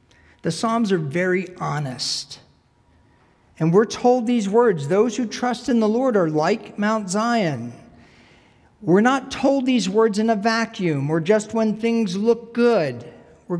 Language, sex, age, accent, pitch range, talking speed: English, male, 50-69, American, 150-210 Hz, 155 wpm